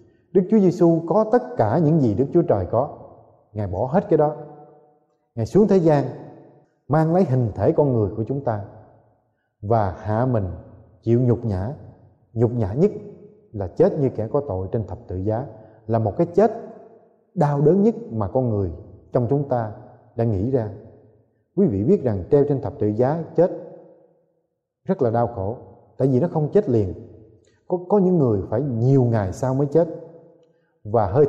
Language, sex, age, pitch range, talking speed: Vietnamese, male, 20-39, 105-145 Hz, 185 wpm